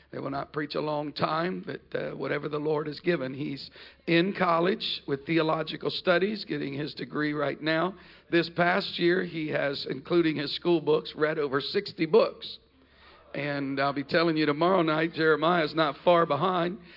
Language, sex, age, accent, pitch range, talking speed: English, male, 50-69, American, 150-175 Hz, 175 wpm